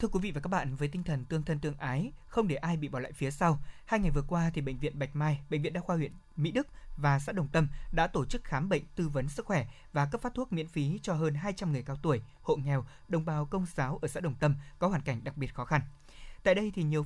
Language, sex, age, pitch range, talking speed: Vietnamese, male, 20-39, 145-180 Hz, 290 wpm